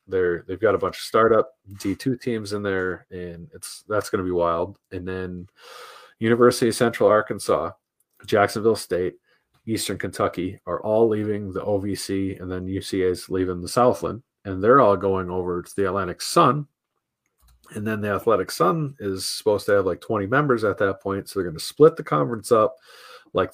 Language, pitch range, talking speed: English, 90-110 Hz, 185 wpm